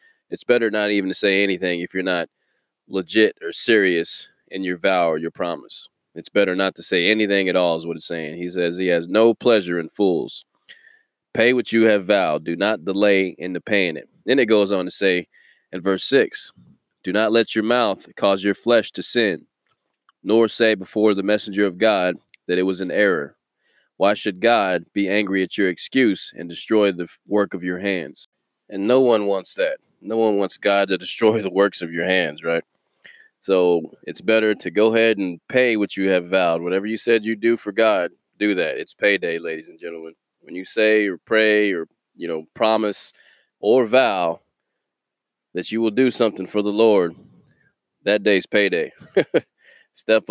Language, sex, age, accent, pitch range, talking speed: English, male, 20-39, American, 90-110 Hz, 195 wpm